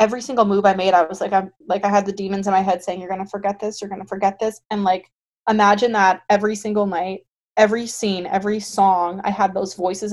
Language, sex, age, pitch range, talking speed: English, female, 20-39, 190-230 Hz, 245 wpm